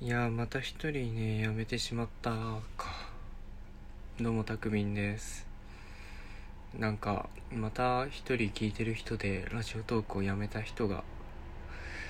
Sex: male